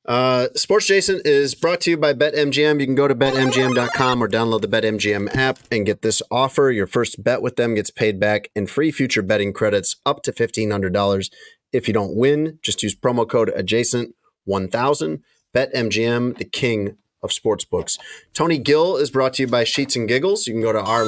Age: 30-49